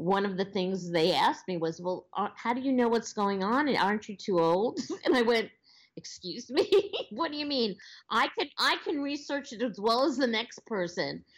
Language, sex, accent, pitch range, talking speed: English, female, American, 170-235 Hz, 220 wpm